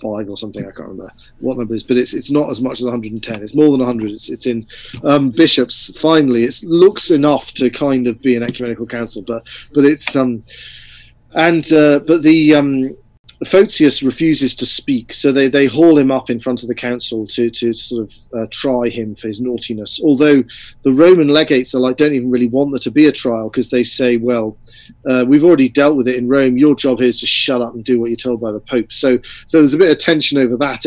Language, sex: English, male